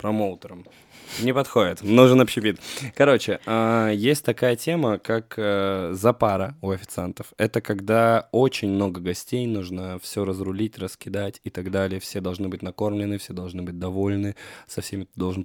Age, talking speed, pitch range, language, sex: 20-39, 140 wpm, 95-110 Hz, Russian, male